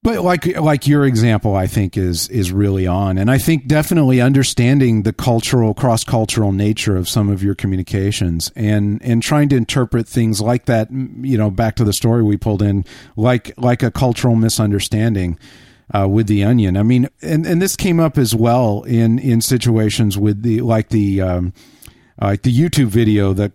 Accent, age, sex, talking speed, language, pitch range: American, 50-69, male, 185 wpm, English, 105-130 Hz